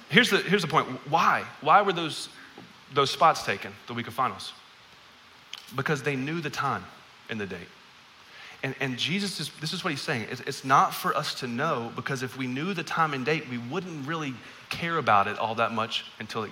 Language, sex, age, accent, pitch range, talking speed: English, male, 30-49, American, 130-180 Hz, 215 wpm